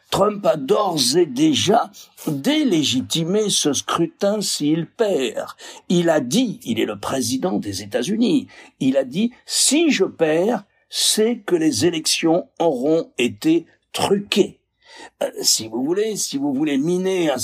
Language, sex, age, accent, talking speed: French, male, 60-79, French, 140 wpm